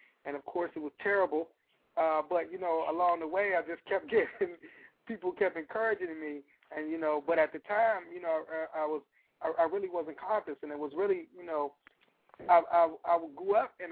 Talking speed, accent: 215 wpm, American